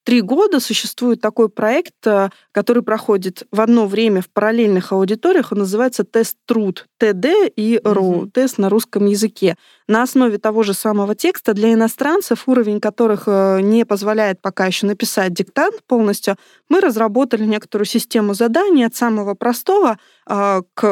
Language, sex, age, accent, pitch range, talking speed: Russian, female, 20-39, native, 195-235 Hz, 145 wpm